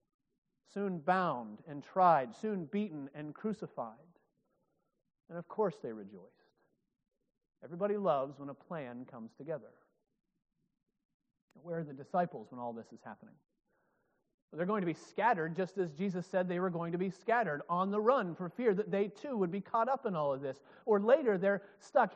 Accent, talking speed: American, 175 wpm